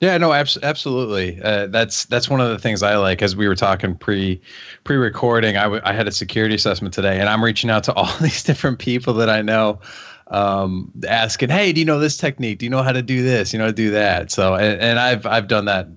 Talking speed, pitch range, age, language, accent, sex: 240 wpm, 95-110 Hz, 30-49, English, American, male